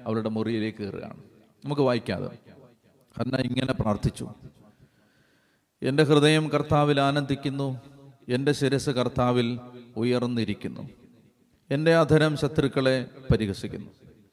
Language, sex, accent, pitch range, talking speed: Malayalam, male, native, 120-155 Hz, 85 wpm